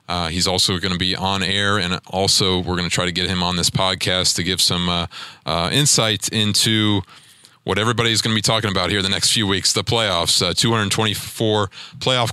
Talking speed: 215 wpm